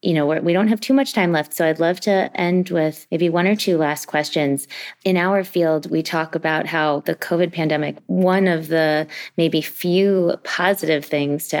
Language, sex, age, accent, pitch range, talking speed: English, female, 30-49, American, 145-170 Hz, 200 wpm